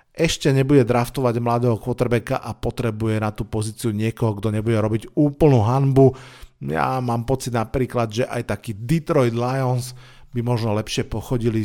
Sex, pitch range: male, 115-140 Hz